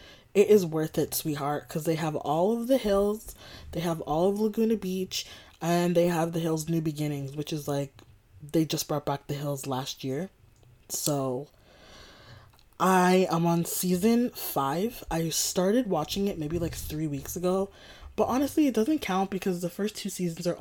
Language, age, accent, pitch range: English, 20-39, American, 145-190 Hz